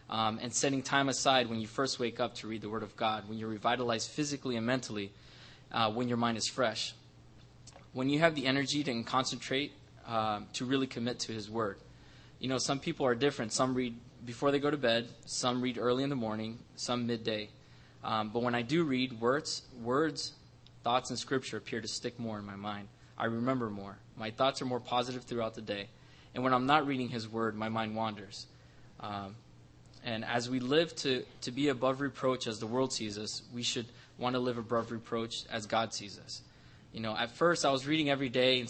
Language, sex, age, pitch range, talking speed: English, male, 20-39, 115-135 Hz, 215 wpm